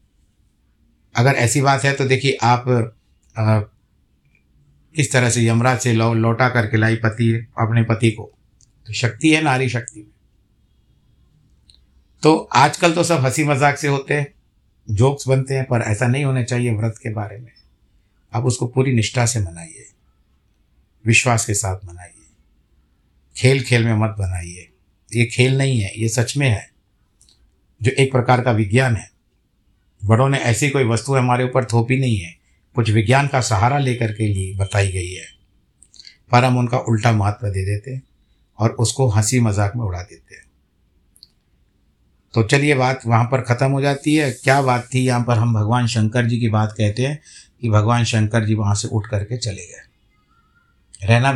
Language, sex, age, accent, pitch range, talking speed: Hindi, male, 60-79, native, 100-130 Hz, 170 wpm